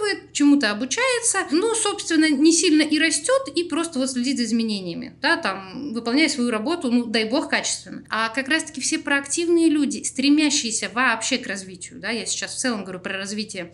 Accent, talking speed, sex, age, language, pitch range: native, 185 wpm, female, 20-39, Russian, 235-290 Hz